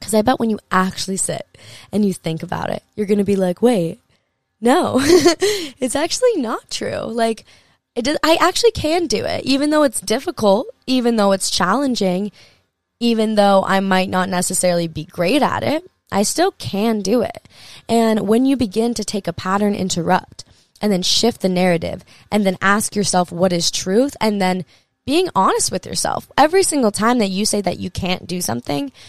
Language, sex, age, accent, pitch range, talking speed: English, female, 20-39, American, 180-225 Hz, 185 wpm